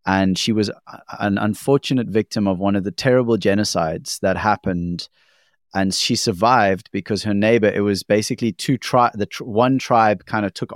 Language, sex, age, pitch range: English, male, 30-49, 100-125 Hz